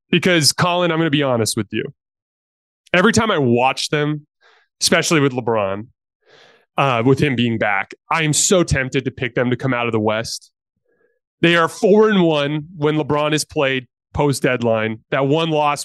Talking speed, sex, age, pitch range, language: 180 wpm, male, 30-49, 120-165 Hz, English